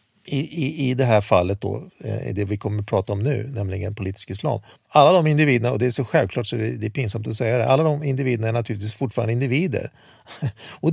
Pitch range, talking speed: 105-145 Hz, 220 wpm